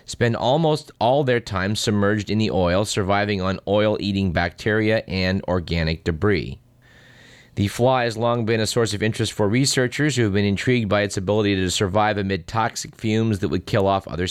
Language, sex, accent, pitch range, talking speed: English, male, American, 95-120 Hz, 185 wpm